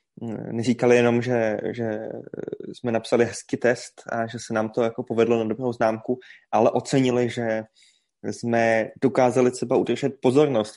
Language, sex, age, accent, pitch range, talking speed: Czech, male, 20-39, native, 115-125 Hz, 145 wpm